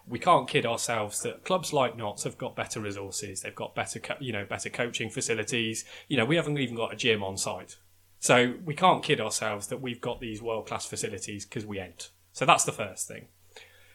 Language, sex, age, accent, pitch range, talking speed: English, male, 20-39, British, 105-135 Hz, 210 wpm